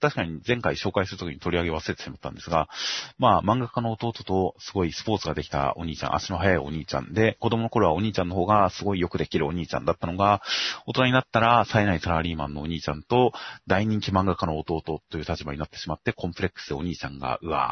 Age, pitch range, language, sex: 30-49, 85-115 Hz, Japanese, male